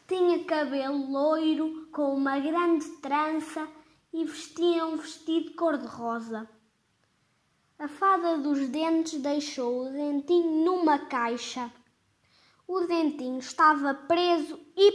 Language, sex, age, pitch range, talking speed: Portuguese, female, 20-39, 275-330 Hz, 105 wpm